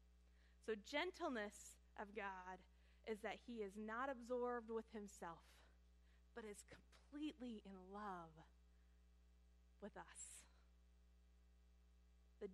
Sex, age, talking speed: female, 20-39, 95 wpm